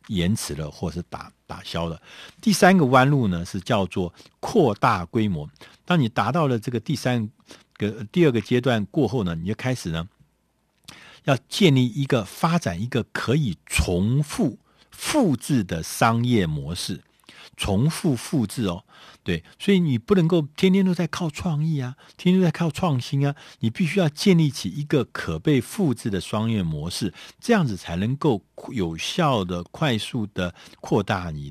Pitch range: 90-150 Hz